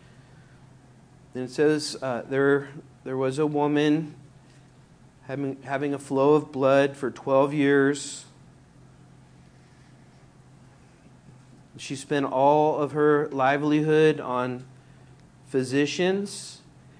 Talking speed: 90 wpm